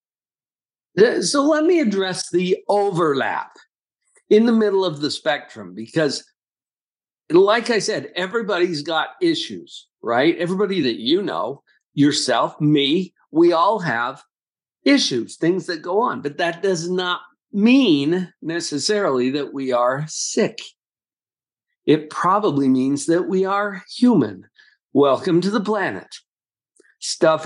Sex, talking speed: male, 120 wpm